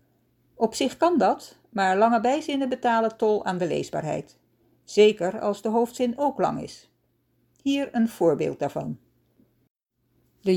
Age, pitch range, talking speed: 60-79, 175-250 Hz, 135 wpm